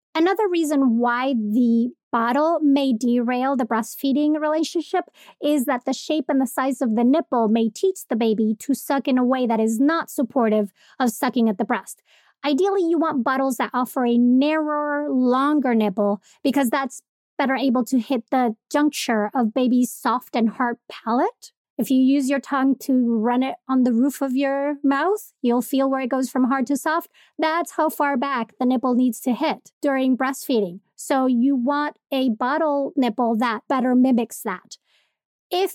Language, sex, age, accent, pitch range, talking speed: English, female, 30-49, American, 245-295 Hz, 180 wpm